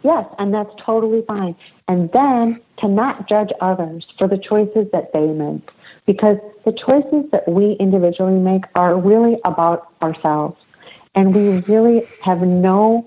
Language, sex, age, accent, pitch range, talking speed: English, female, 50-69, American, 180-225 Hz, 150 wpm